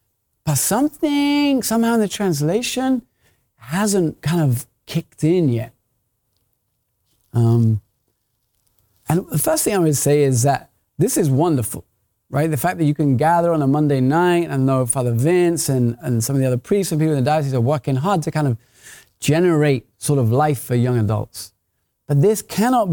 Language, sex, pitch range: English, male, 120-165 Hz